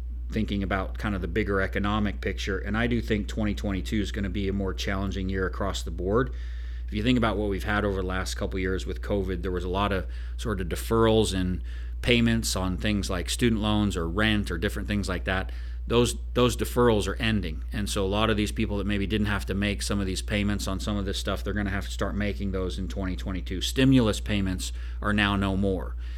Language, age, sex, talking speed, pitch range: English, 40-59, male, 235 wpm, 90-110 Hz